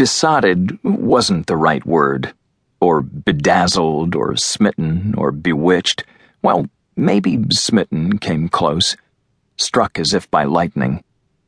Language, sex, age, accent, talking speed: English, male, 40-59, American, 110 wpm